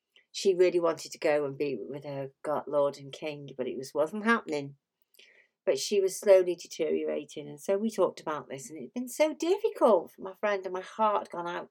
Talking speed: 220 wpm